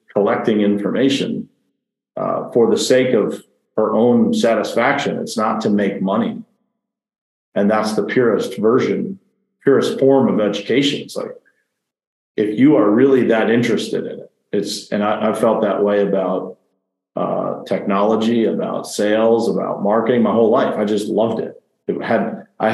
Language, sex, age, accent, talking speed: English, male, 40-59, American, 155 wpm